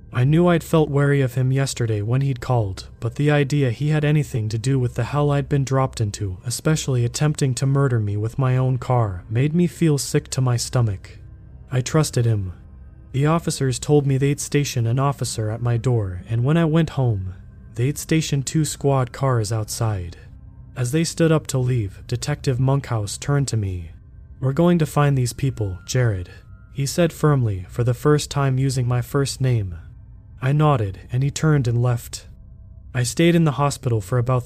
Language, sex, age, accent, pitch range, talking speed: English, male, 20-39, American, 110-145 Hz, 190 wpm